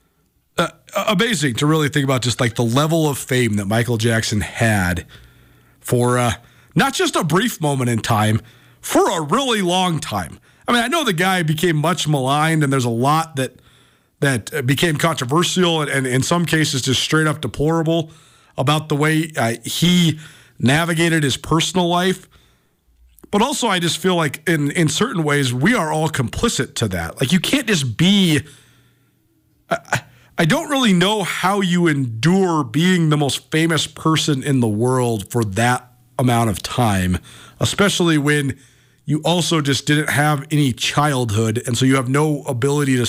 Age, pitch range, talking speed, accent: 40-59, 125-180 Hz, 170 wpm, American